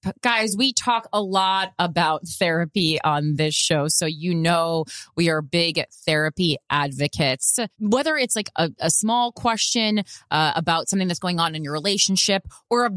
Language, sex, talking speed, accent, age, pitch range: English, female, 165 wpm, American, 20-39, 145-205 Hz